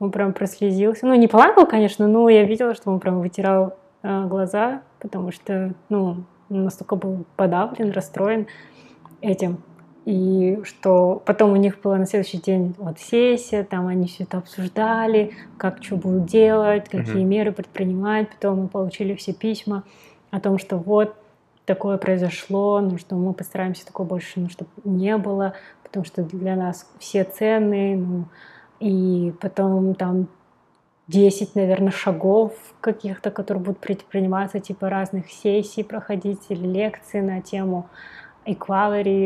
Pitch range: 185-210 Hz